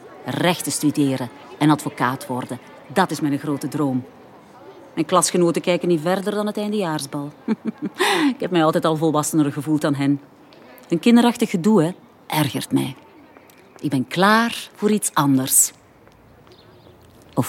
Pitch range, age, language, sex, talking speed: 150-215 Hz, 40-59, Dutch, female, 135 wpm